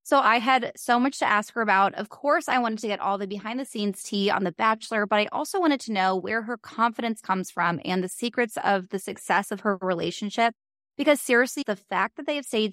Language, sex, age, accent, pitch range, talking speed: English, female, 20-39, American, 195-230 Hz, 240 wpm